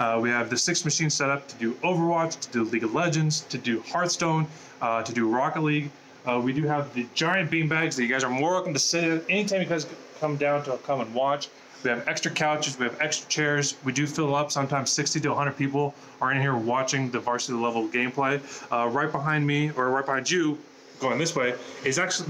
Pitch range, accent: 130-155 Hz, American